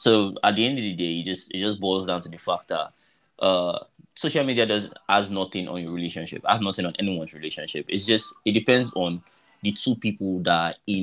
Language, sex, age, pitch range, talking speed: English, male, 20-39, 90-110 Hz, 230 wpm